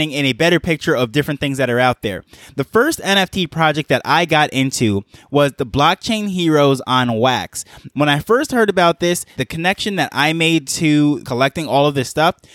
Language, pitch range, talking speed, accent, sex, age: English, 140-165 Hz, 200 wpm, American, male, 20-39